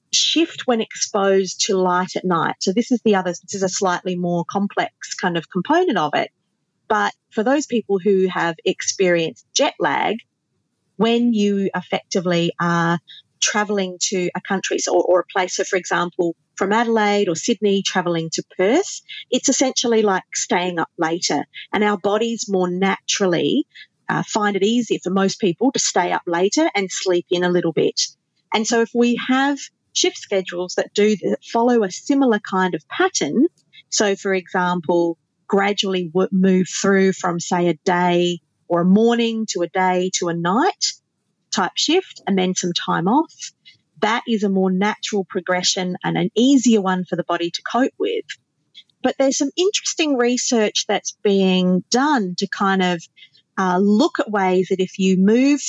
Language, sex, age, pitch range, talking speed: English, female, 40-59, 180-235 Hz, 170 wpm